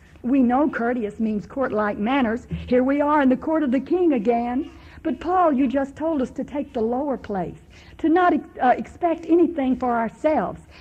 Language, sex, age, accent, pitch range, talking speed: English, female, 60-79, American, 215-280 Hz, 190 wpm